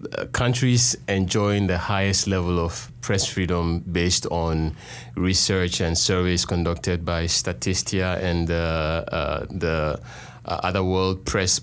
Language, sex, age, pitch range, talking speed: English, male, 30-49, 85-100 Hz, 130 wpm